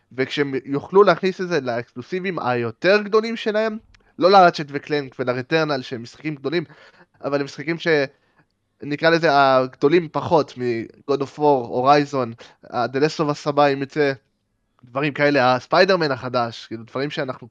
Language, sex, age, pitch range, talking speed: Hebrew, male, 20-39, 130-180 Hz, 125 wpm